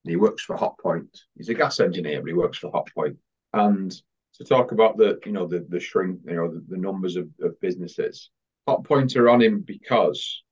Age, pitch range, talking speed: 30-49, 95-135 Hz, 205 wpm